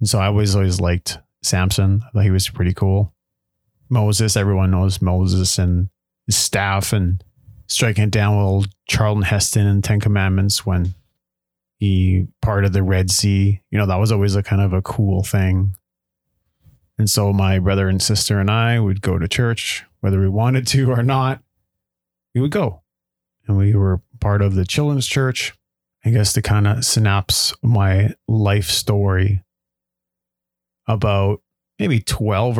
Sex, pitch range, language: male, 95-110 Hz, English